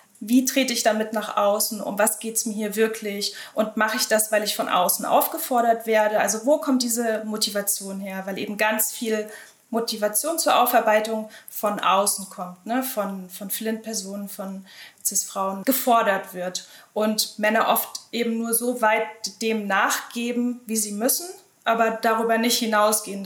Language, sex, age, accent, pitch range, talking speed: German, female, 20-39, German, 205-235 Hz, 165 wpm